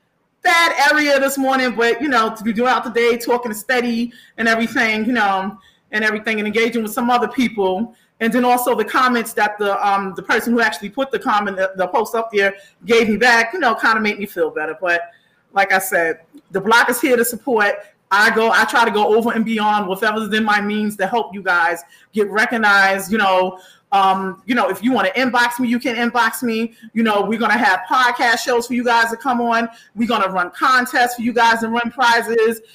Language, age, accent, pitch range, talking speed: English, 30-49, American, 210-265 Hz, 235 wpm